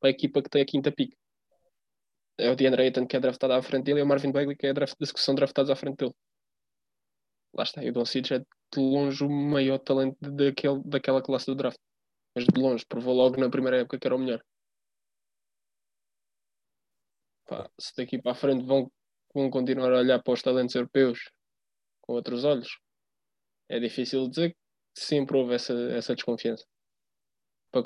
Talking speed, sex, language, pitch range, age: 190 wpm, male, Portuguese, 120-135 Hz, 20-39